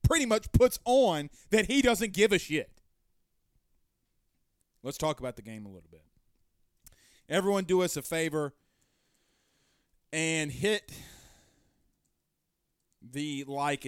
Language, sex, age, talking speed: English, male, 30-49, 115 wpm